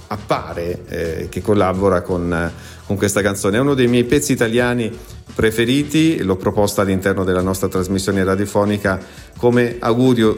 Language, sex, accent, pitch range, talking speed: Italian, male, native, 95-120 Hz, 140 wpm